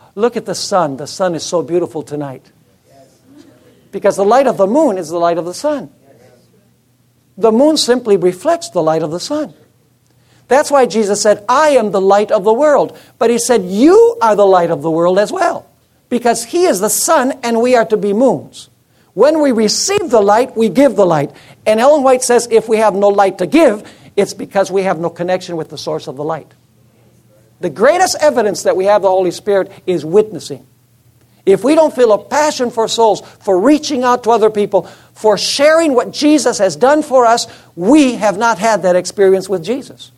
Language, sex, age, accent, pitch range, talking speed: English, male, 60-79, American, 180-250 Hz, 205 wpm